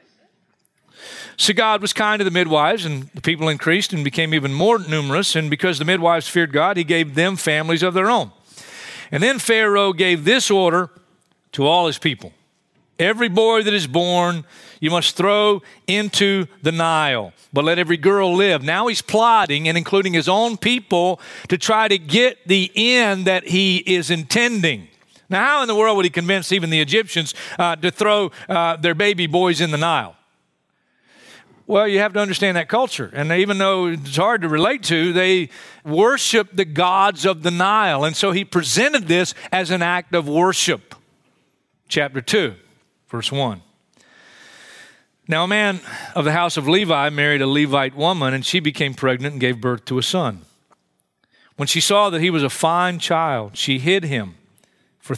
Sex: male